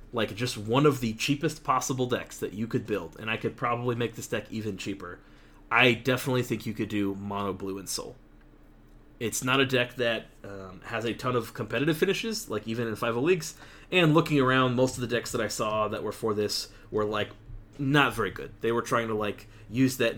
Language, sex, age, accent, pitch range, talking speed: English, male, 30-49, American, 105-130 Hz, 220 wpm